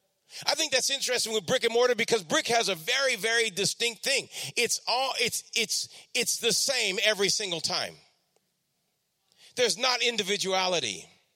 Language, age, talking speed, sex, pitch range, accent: English, 40-59, 155 wpm, male, 210-255 Hz, American